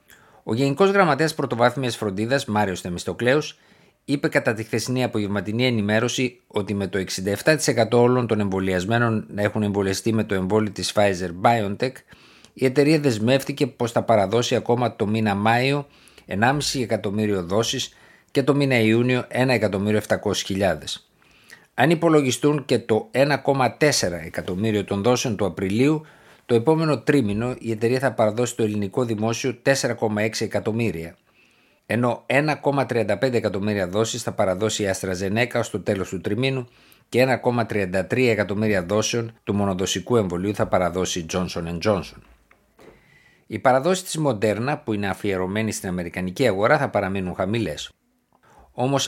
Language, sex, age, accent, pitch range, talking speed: Greek, male, 50-69, native, 100-130 Hz, 130 wpm